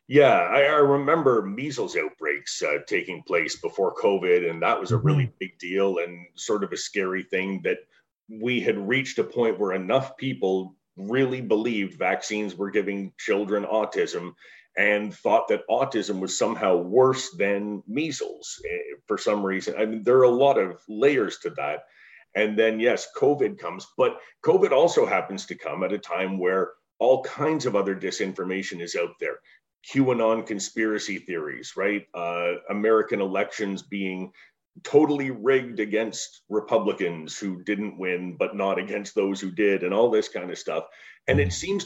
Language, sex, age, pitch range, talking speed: English, male, 30-49, 105-160 Hz, 165 wpm